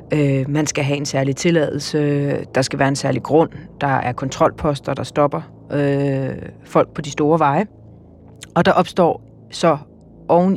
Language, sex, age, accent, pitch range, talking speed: Danish, female, 30-49, native, 140-175 Hz, 155 wpm